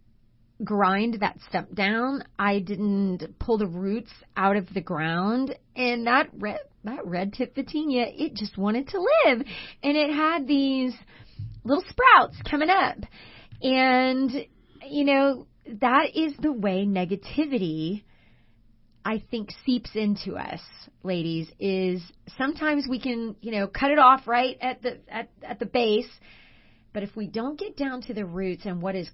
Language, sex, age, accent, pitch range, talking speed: English, female, 30-49, American, 180-235 Hz, 155 wpm